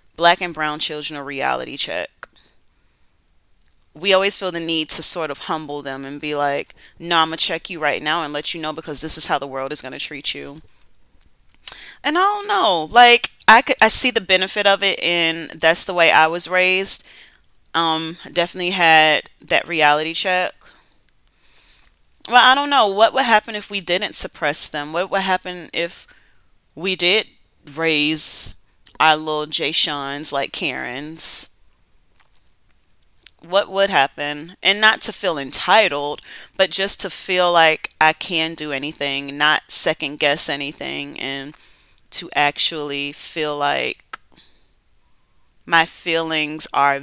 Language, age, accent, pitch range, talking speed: English, 30-49, American, 145-185 Hz, 155 wpm